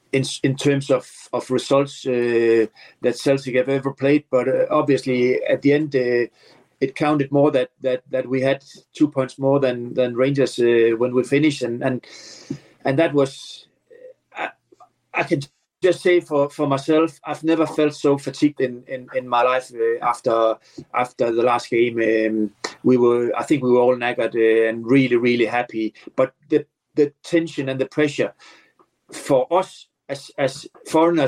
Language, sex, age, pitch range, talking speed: English, male, 40-59, 120-145 Hz, 175 wpm